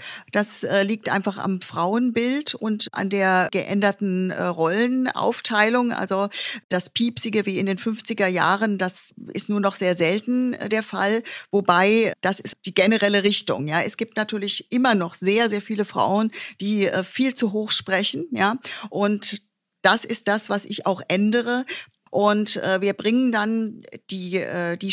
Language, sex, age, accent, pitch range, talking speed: German, female, 40-59, German, 195-230 Hz, 155 wpm